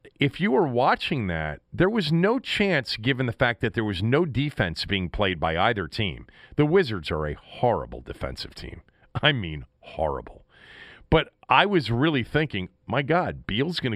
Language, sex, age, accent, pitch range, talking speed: English, male, 40-59, American, 100-150 Hz, 175 wpm